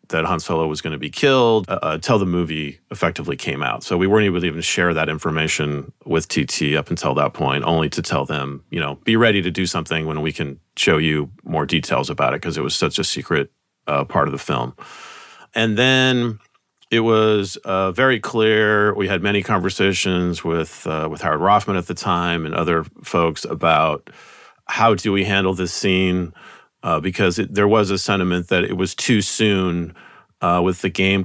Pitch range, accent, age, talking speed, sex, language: 85-105 Hz, American, 40-59, 200 wpm, male, English